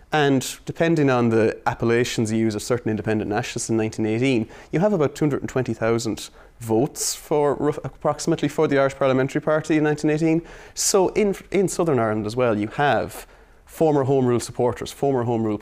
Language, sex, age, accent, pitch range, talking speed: English, male, 30-49, Irish, 105-140 Hz, 170 wpm